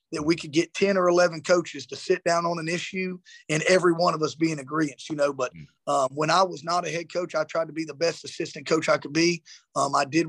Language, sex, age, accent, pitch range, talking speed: English, male, 30-49, American, 155-170 Hz, 275 wpm